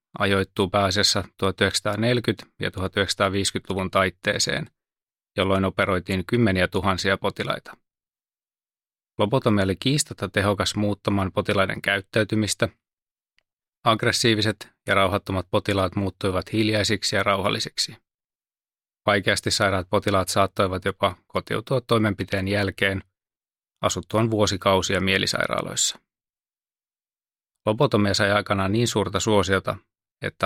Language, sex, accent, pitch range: Finnish, male, native, 95-110 Hz